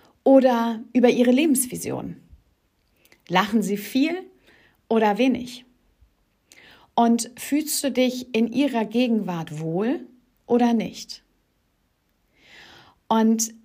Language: German